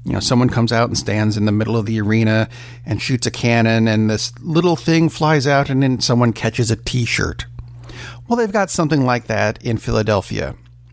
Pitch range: 110-135 Hz